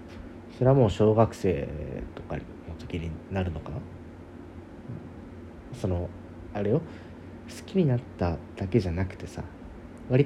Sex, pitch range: male, 85-115 Hz